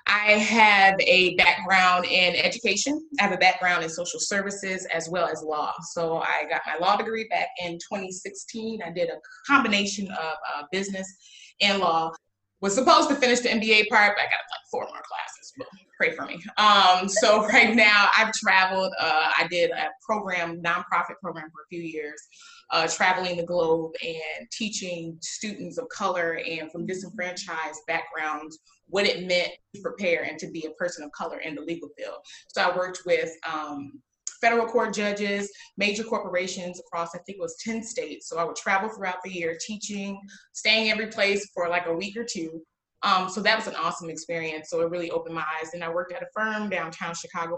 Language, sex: English, female